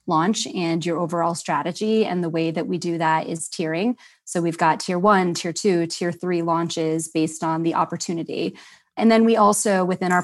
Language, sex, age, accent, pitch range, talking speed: English, female, 20-39, American, 165-185 Hz, 200 wpm